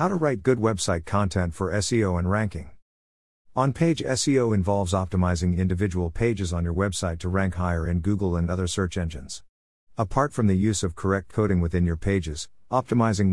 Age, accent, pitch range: 50-69, American, 85-115 Hz